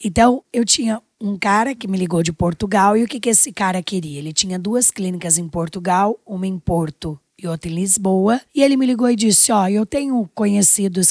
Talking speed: 215 wpm